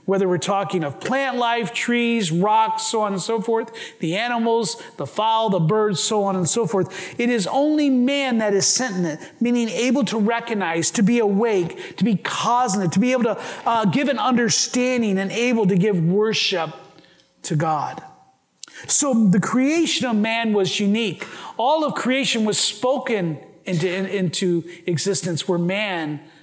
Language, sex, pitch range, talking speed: English, male, 185-240 Hz, 170 wpm